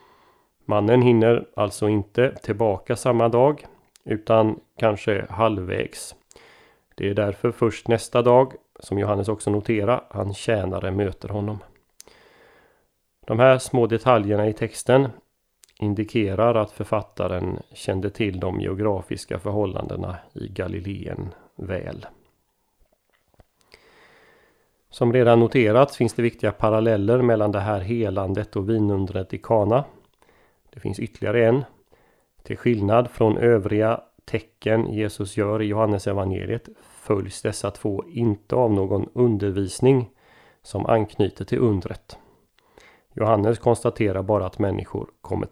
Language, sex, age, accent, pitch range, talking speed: Swedish, male, 30-49, native, 100-120 Hz, 115 wpm